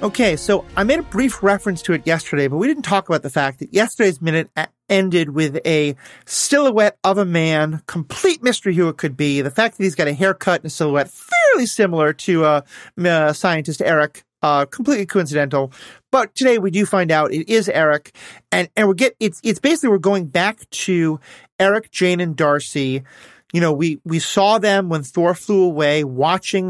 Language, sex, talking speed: English, male, 200 wpm